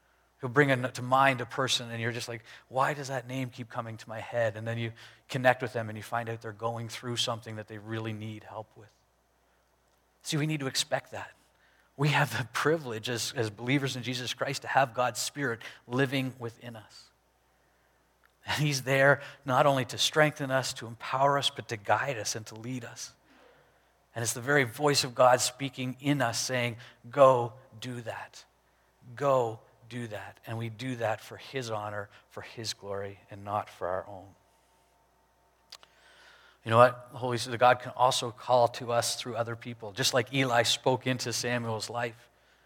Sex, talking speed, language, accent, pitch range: male, 195 wpm, English, American, 115-130 Hz